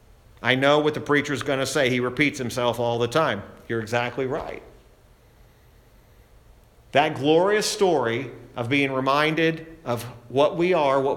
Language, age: English, 50-69